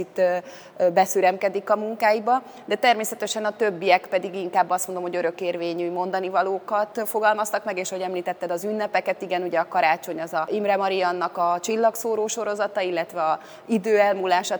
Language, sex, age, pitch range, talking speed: Hungarian, female, 30-49, 180-210 Hz, 150 wpm